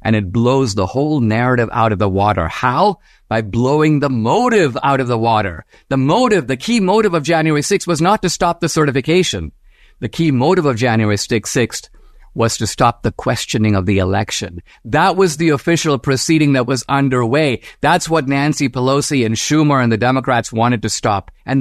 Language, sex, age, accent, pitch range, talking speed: English, male, 50-69, American, 100-145 Hz, 190 wpm